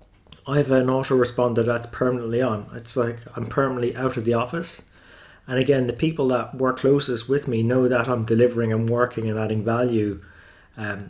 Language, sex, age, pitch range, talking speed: English, male, 20-39, 115-125 Hz, 185 wpm